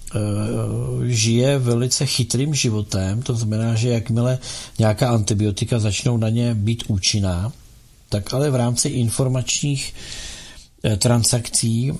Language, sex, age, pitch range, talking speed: Czech, male, 50-69, 105-125 Hz, 105 wpm